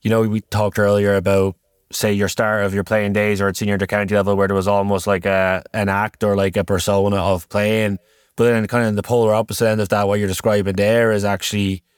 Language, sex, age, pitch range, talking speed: English, male, 20-39, 100-115 Hz, 250 wpm